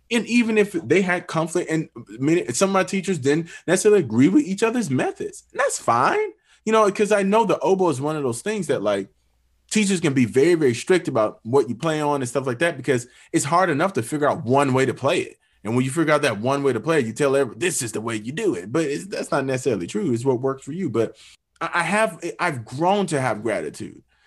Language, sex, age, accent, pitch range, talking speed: English, male, 20-39, American, 120-165 Hz, 250 wpm